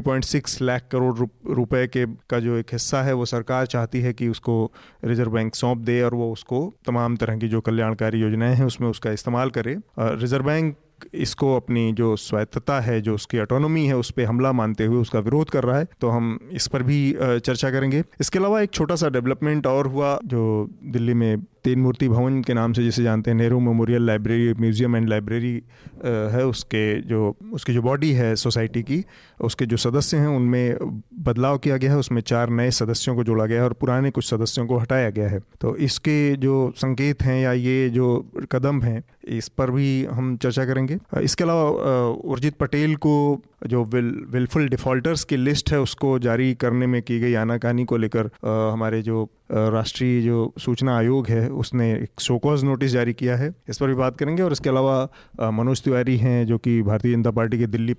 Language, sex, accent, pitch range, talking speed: Hindi, male, native, 115-135 Hz, 200 wpm